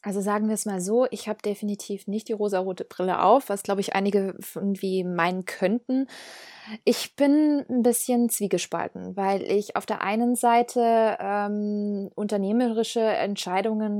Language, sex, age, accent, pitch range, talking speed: English, female, 20-39, German, 200-235 Hz, 150 wpm